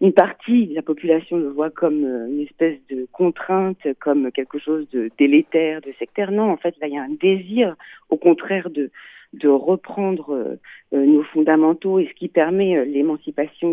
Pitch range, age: 150-205 Hz, 40-59